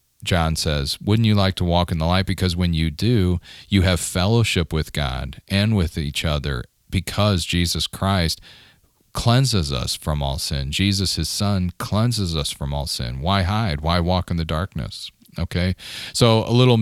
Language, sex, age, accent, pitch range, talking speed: English, male, 40-59, American, 80-100 Hz, 180 wpm